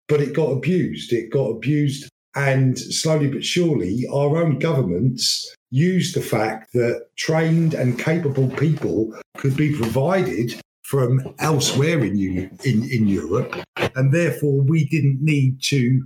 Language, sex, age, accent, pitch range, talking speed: English, male, 50-69, British, 115-150 Hz, 135 wpm